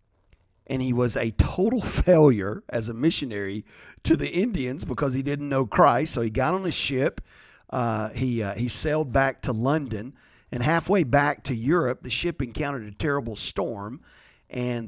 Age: 40-59